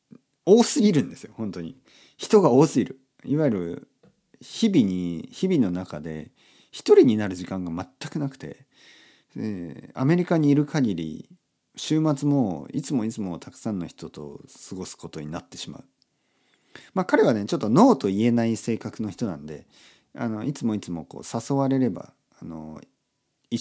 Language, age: Japanese, 40-59